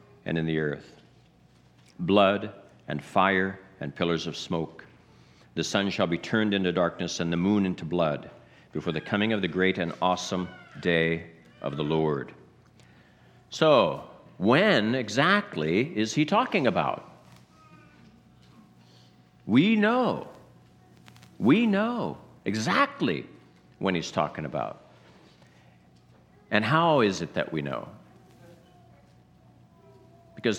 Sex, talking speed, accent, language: male, 115 wpm, American, English